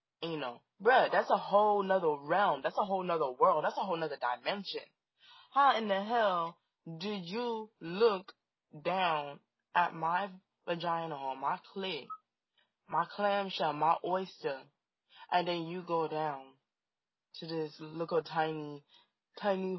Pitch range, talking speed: 150-190 Hz, 140 wpm